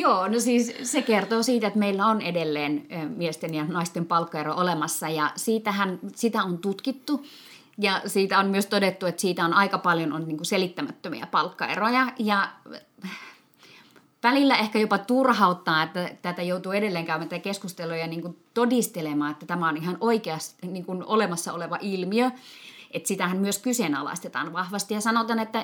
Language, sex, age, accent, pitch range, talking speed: Finnish, female, 30-49, native, 170-225 Hz, 155 wpm